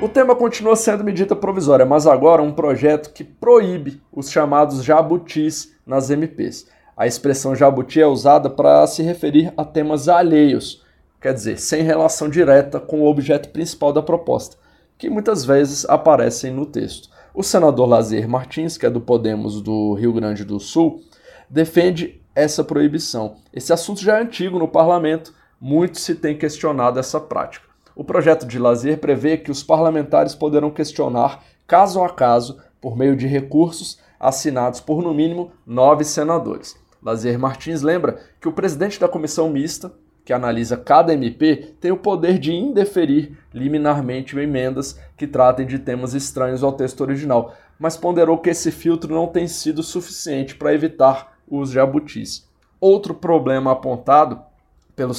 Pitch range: 135-165 Hz